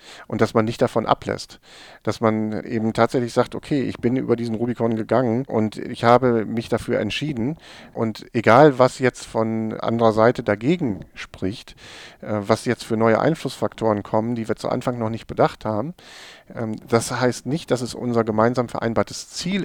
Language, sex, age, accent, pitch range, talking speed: German, male, 50-69, German, 110-130 Hz, 170 wpm